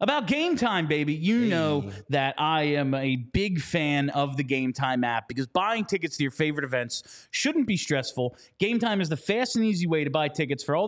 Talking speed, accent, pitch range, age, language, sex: 220 wpm, American, 135-195 Hz, 30-49, English, male